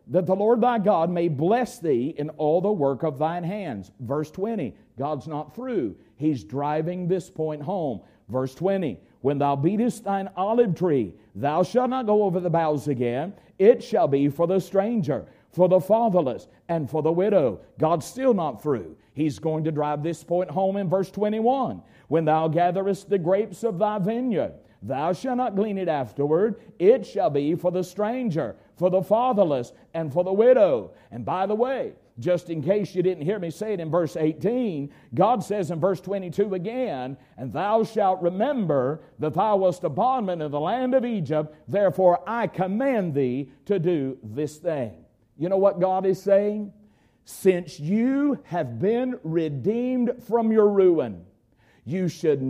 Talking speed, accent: 175 wpm, American